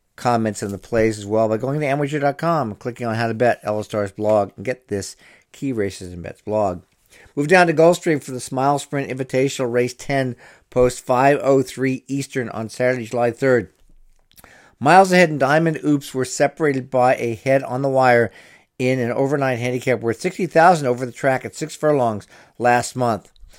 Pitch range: 120-145 Hz